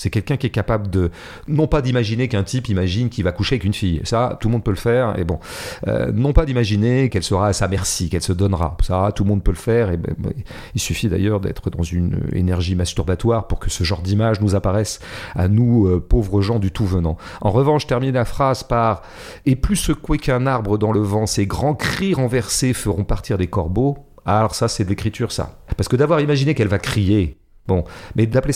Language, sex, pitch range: French, male, 95-120 Hz